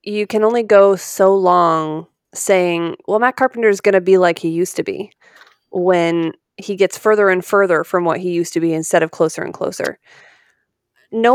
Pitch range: 175-215 Hz